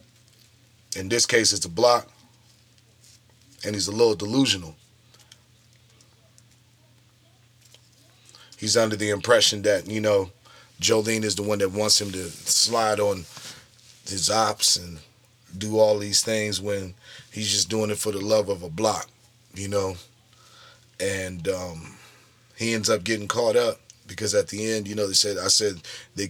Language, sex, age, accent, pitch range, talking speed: English, male, 30-49, American, 100-120 Hz, 155 wpm